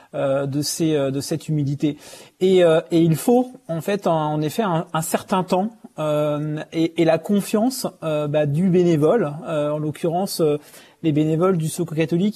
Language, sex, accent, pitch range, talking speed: French, male, French, 155-185 Hz, 175 wpm